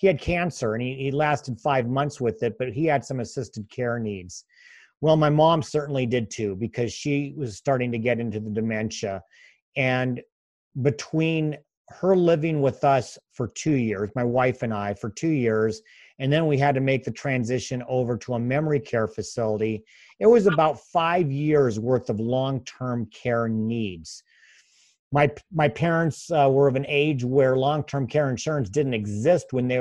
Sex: male